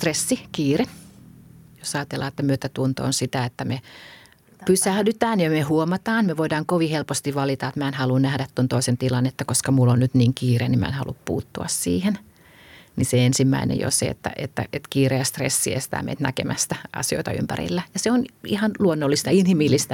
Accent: native